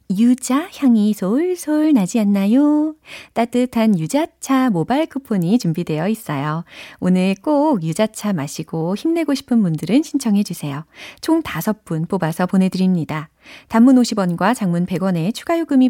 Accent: native